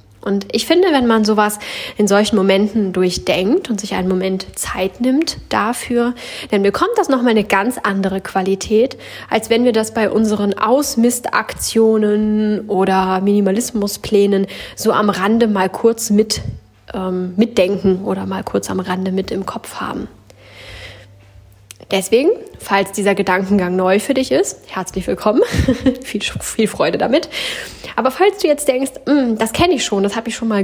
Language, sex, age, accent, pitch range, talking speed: German, female, 10-29, German, 185-235 Hz, 155 wpm